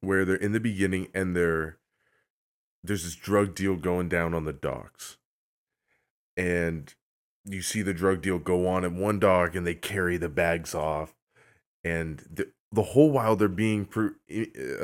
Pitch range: 90-120 Hz